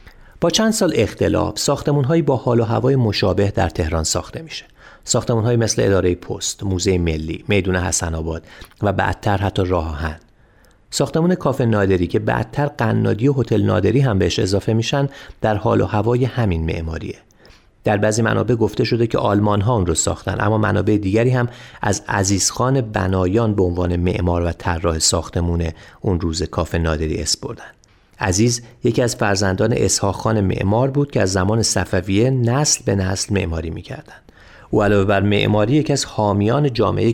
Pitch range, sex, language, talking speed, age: 95-120 Hz, male, Persian, 165 wpm, 30-49